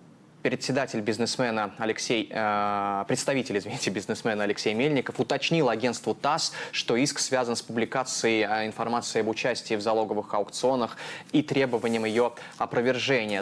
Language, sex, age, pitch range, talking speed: Russian, male, 20-39, 105-120 Hz, 115 wpm